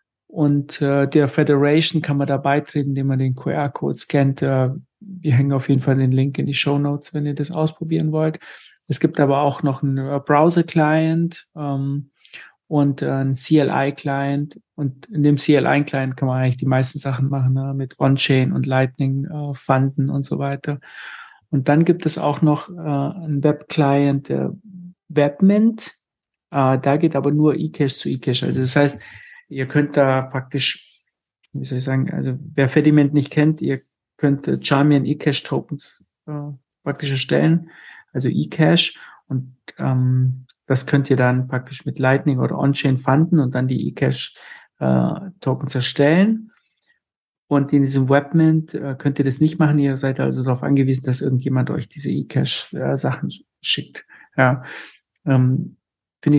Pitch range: 135-150 Hz